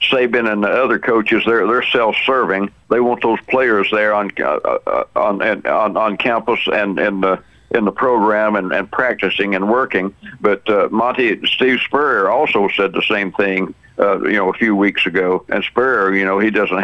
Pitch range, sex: 100-110 Hz, male